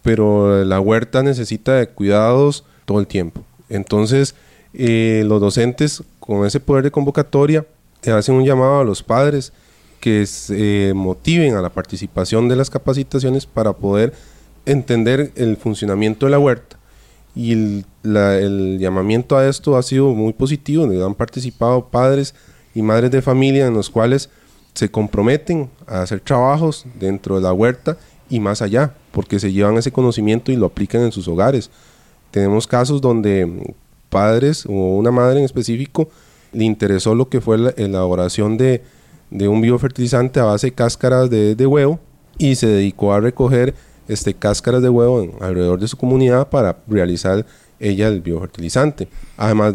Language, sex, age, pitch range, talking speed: Spanish, male, 30-49, 100-135 Hz, 160 wpm